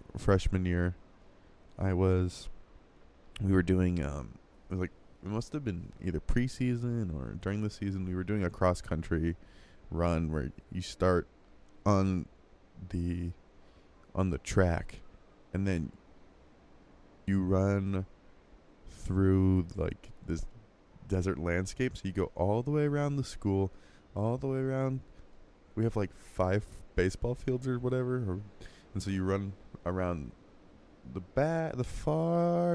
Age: 20-39